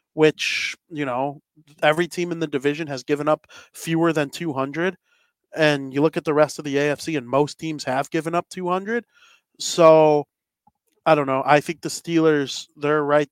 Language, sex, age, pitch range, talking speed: English, male, 30-49, 145-170 Hz, 180 wpm